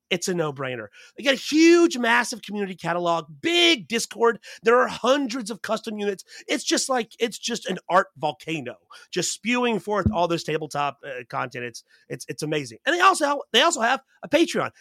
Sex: male